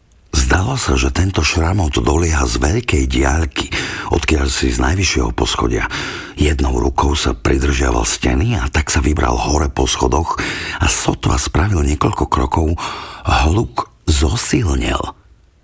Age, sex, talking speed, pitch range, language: 50-69, male, 125 wpm, 65-85 Hz, Slovak